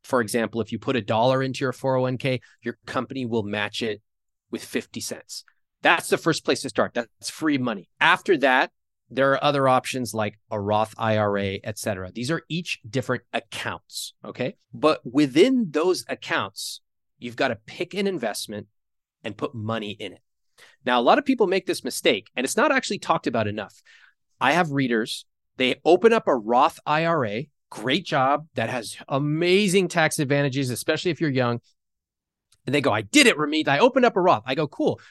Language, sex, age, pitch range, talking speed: English, male, 30-49, 110-155 Hz, 190 wpm